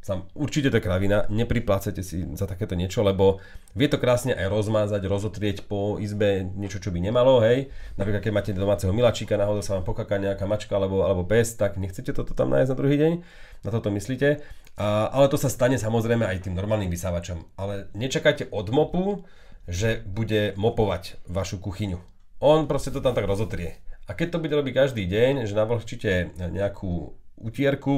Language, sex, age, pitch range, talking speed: English, male, 40-59, 95-115 Hz, 180 wpm